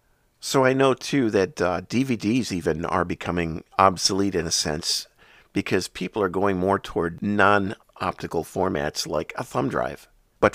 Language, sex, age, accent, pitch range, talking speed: English, male, 50-69, American, 85-105 Hz, 155 wpm